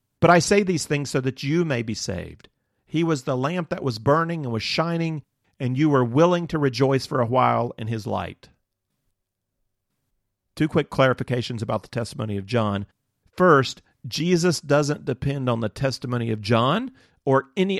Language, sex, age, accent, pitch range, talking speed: English, male, 40-59, American, 110-145 Hz, 175 wpm